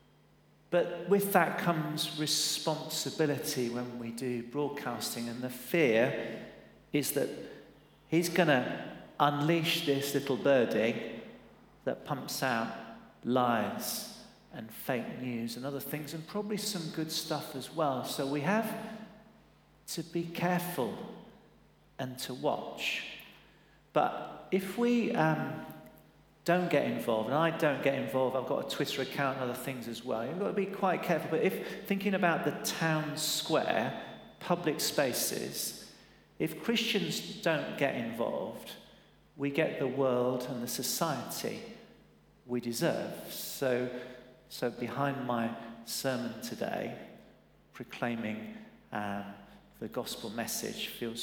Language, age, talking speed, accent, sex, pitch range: English, 40-59, 130 wpm, British, male, 125-170 Hz